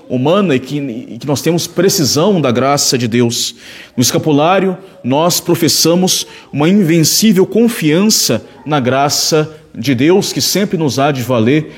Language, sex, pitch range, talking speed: Portuguese, male, 135-170 Hz, 150 wpm